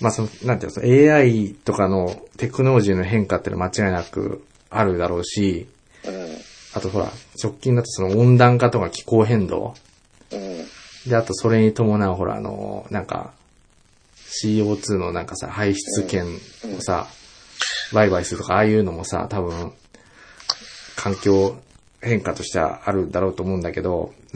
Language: Japanese